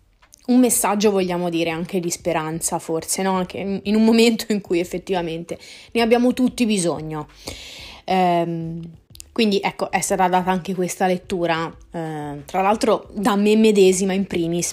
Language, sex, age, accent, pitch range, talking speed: Italian, female, 20-39, native, 175-220 Hz, 145 wpm